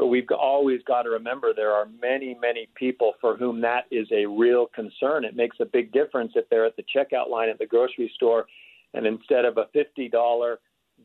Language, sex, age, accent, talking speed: English, male, 50-69, American, 205 wpm